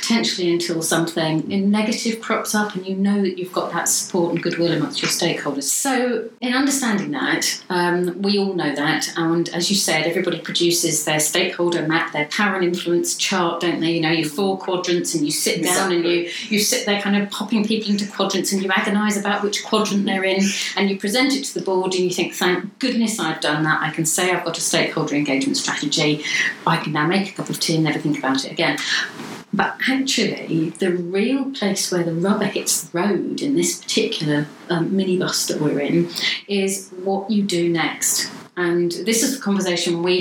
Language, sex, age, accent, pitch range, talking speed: English, female, 40-59, British, 170-215 Hz, 210 wpm